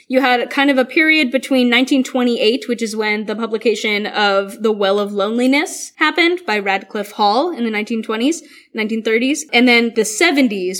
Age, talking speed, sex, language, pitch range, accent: 10-29, 165 wpm, female, English, 215-275 Hz, American